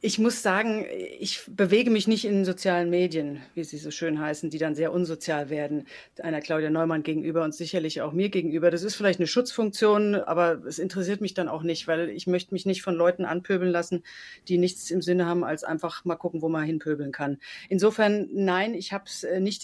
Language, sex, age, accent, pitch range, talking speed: German, female, 40-59, German, 170-200 Hz, 210 wpm